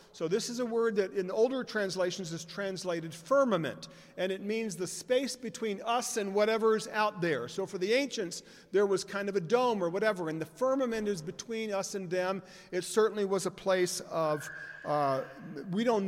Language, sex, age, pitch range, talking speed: English, male, 50-69, 180-225 Hz, 200 wpm